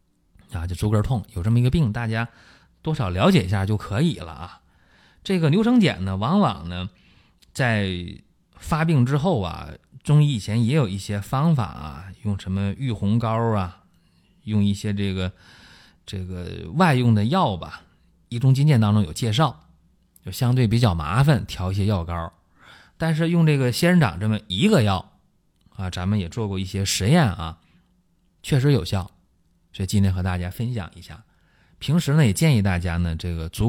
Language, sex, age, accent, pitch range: Chinese, male, 30-49, native, 90-120 Hz